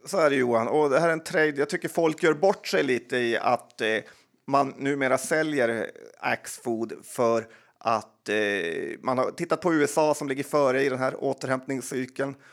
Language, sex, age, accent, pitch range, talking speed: Swedish, male, 30-49, native, 120-150 Hz, 170 wpm